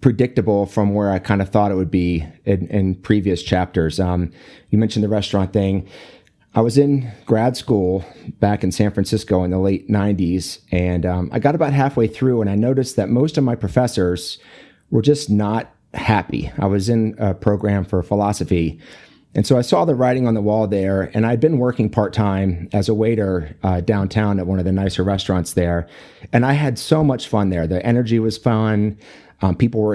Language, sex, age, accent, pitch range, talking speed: English, male, 30-49, American, 95-115 Hz, 200 wpm